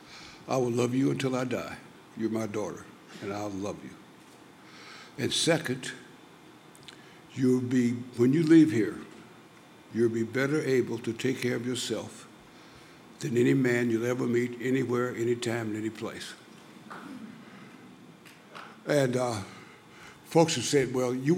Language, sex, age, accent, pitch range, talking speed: English, male, 60-79, American, 120-135 Hz, 135 wpm